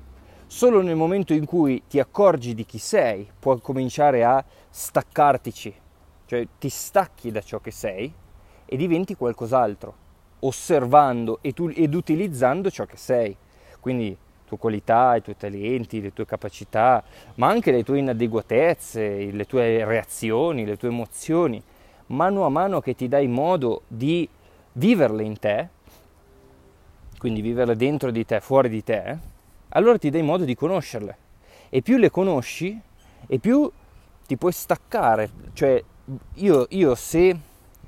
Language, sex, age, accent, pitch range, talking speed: Italian, male, 20-39, native, 100-135 Hz, 140 wpm